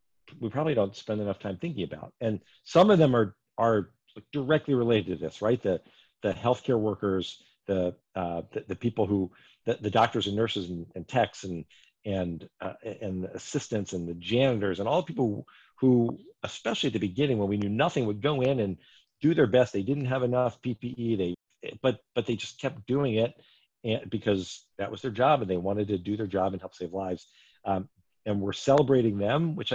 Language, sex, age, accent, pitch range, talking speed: English, male, 50-69, American, 100-135 Hz, 205 wpm